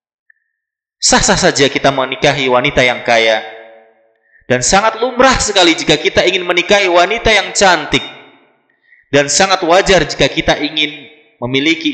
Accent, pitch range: native, 120-175 Hz